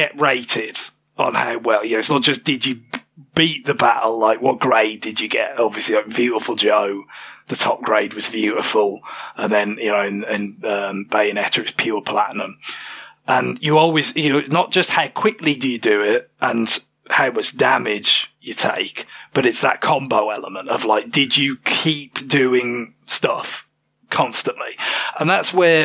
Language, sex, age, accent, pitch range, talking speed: English, male, 30-49, British, 115-155 Hz, 175 wpm